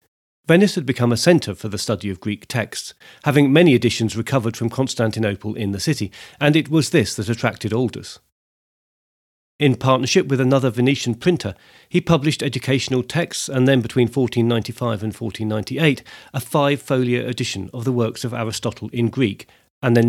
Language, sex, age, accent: English, male, 40-59, British